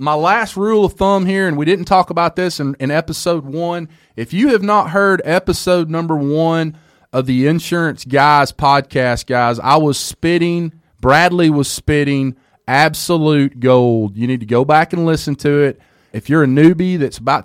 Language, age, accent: English, 30-49, American